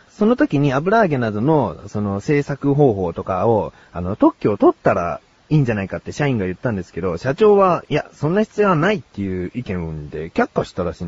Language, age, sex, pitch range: Japanese, 30-49, male, 100-165 Hz